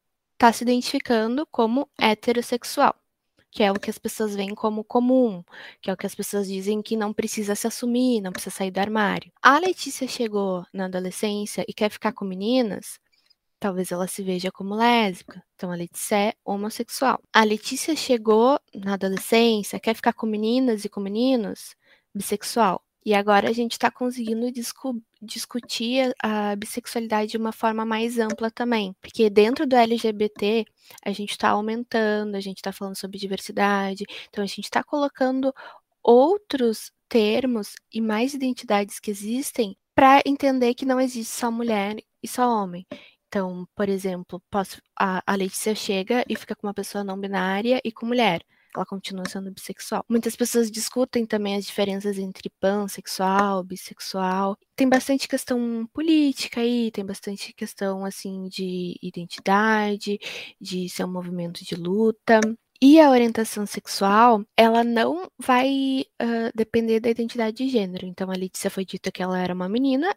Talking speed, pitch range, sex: 160 wpm, 200-240 Hz, female